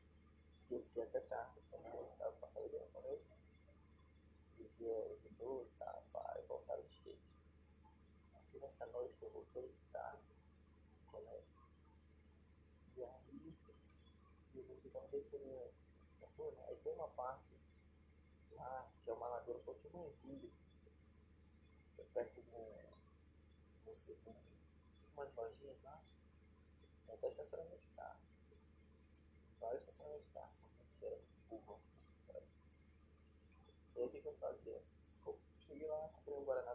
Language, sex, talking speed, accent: Portuguese, male, 120 wpm, Brazilian